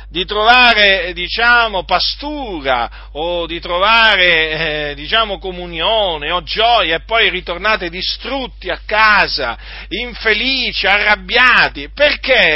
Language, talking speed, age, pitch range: Italian, 100 wpm, 40-59, 190-240 Hz